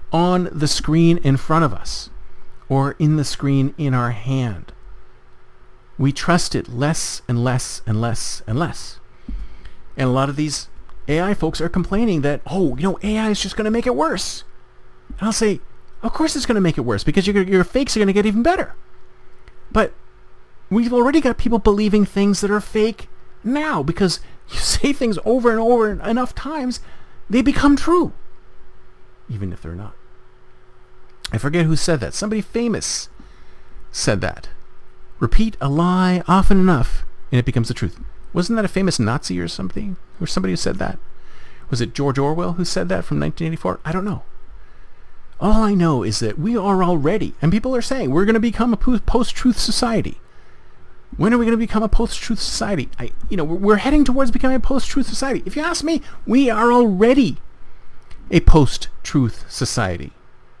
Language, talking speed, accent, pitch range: English, 180 wpm, American, 135-230 Hz